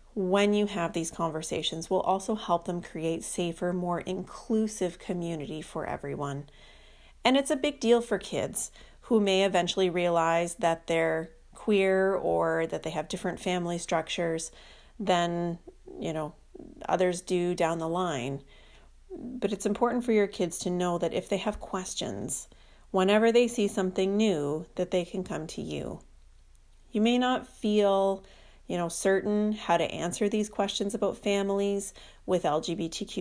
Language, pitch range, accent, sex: English, 165-200 Hz, American, female